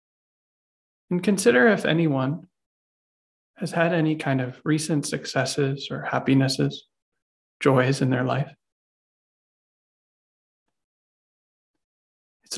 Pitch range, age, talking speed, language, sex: 130-150 Hz, 20-39, 85 wpm, English, male